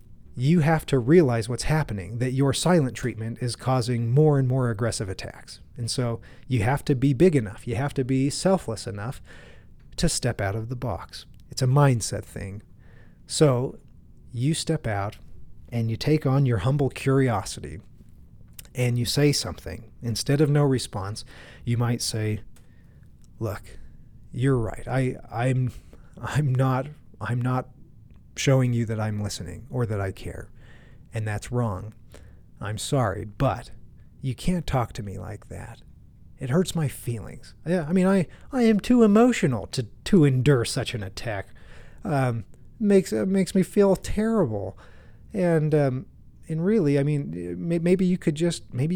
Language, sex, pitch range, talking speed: English, male, 110-145 Hz, 160 wpm